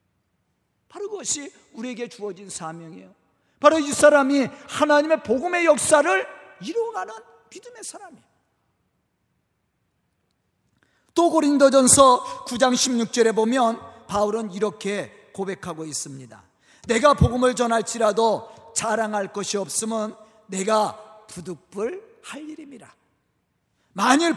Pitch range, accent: 210-295 Hz, native